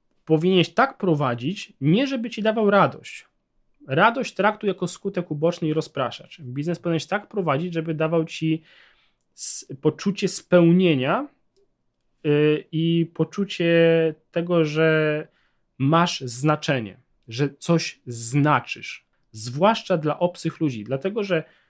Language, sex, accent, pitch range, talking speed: Polish, male, native, 135-180 Hz, 110 wpm